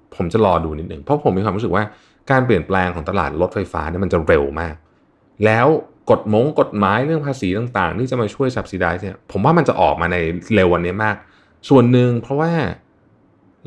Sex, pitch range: male, 85-125 Hz